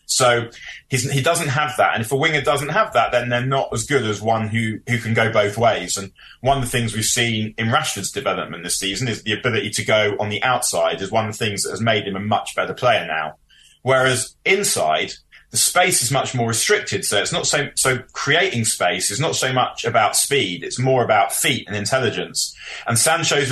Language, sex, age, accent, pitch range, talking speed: English, male, 20-39, British, 110-135 Hz, 225 wpm